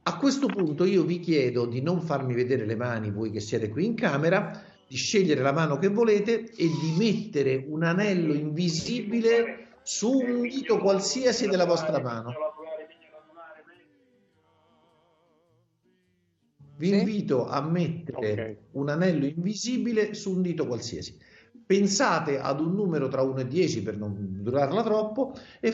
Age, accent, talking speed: 50-69, native, 140 wpm